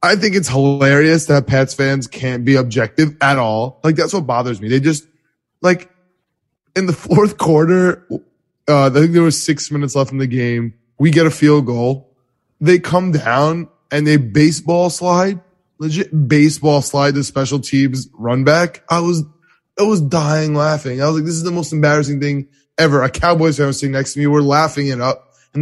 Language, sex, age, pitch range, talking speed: English, male, 20-39, 135-170 Hz, 195 wpm